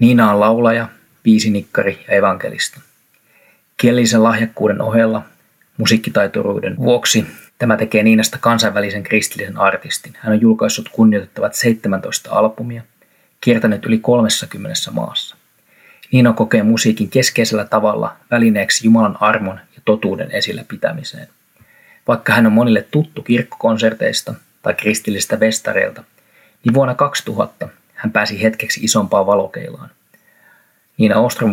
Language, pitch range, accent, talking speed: Finnish, 105-115 Hz, native, 110 wpm